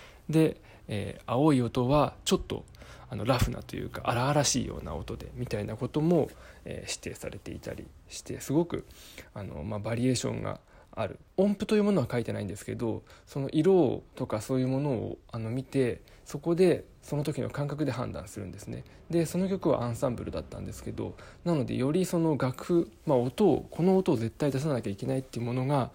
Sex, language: male, Japanese